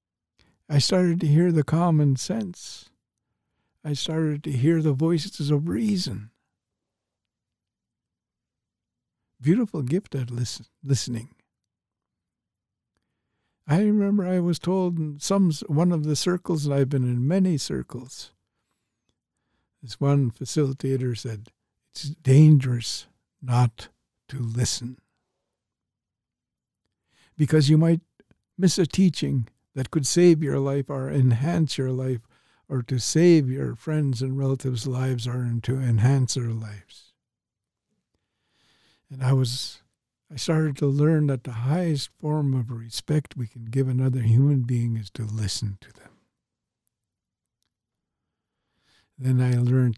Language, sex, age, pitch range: English, male, 60-79, 120-150 Hz